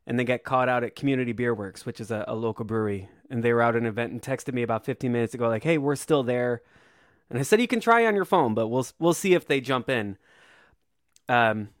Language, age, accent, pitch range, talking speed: English, 20-39, American, 115-145 Hz, 260 wpm